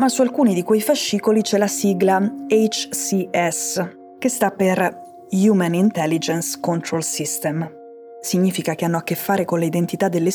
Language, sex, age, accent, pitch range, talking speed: Italian, female, 20-39, native, 165-220 Hz, 150 wpm